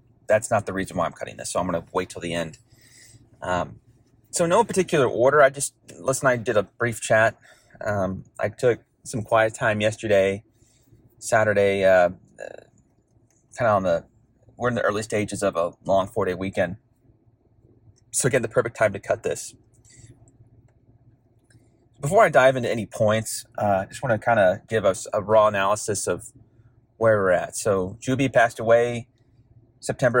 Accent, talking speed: American, 175 wpm